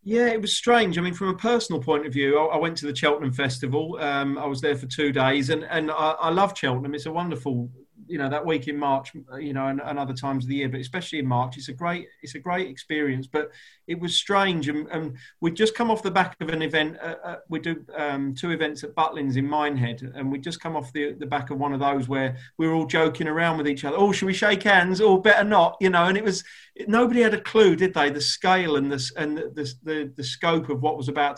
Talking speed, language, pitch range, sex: 270 wpm, English, 140-175 Hz, male